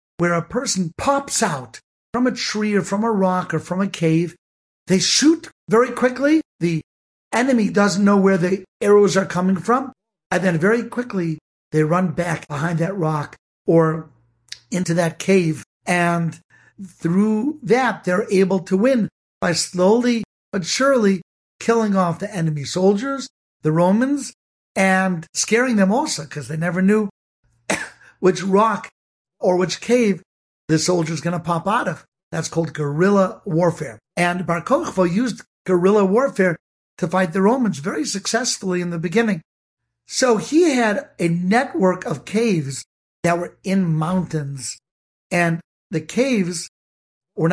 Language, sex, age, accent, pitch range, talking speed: English, male, 60-79, American, 170-220 Hz, 145 wpm